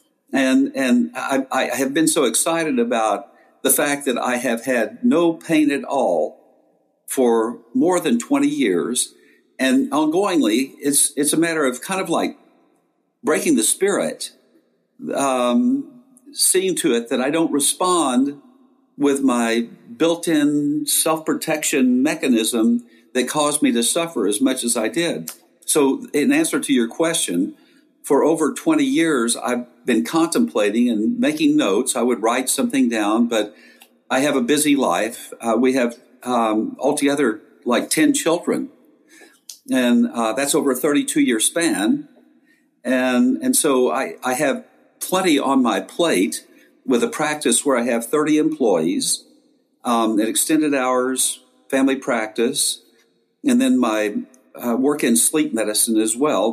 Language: English